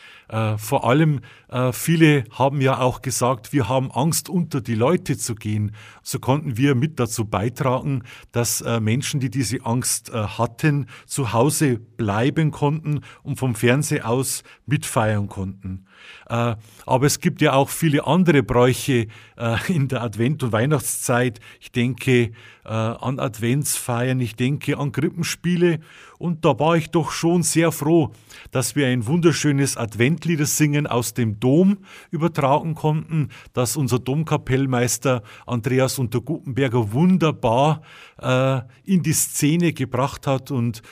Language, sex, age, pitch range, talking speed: German, male, 50-69, 120-150 Hz, 140 wpm